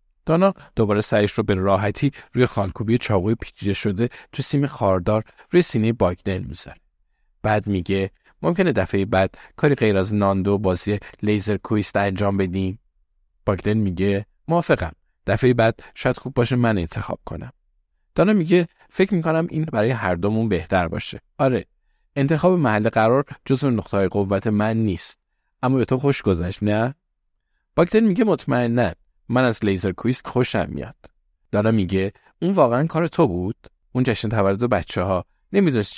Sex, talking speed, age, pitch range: male, 145 wpm, 50-69, 95-120 Hz